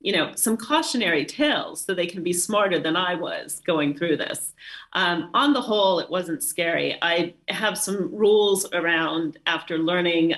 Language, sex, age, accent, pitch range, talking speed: English, female, 40-59, American, 155-185 Hz, 175 wpm